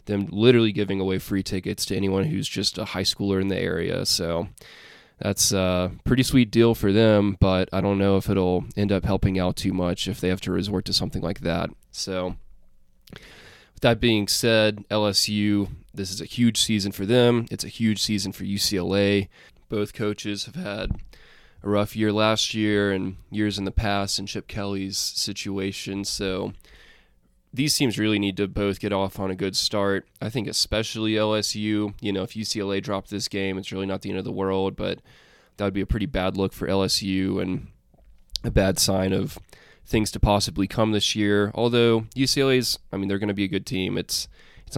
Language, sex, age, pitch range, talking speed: English, male, 20-39, 95-105 Hz, 195 wpm